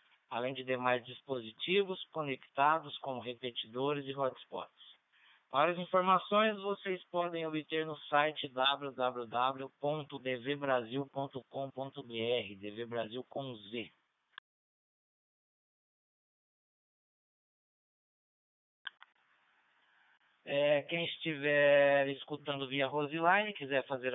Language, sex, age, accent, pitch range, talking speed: Portuguese, male, 20-39, Brazilian, 130-160 Hz, 70 wpm